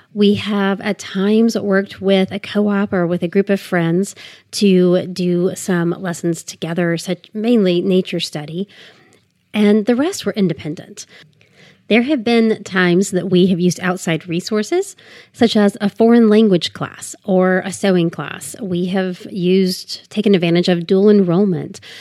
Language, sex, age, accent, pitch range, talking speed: English, female, 30-49, American, 180-225 Hz, 155 wpm